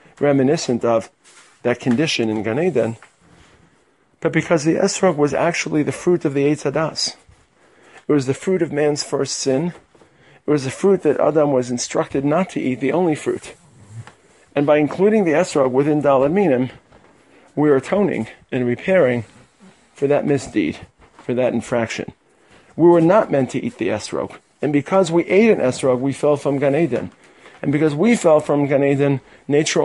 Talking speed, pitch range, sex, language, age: 170 wpm, 135-170 Hz, male, English, 40-59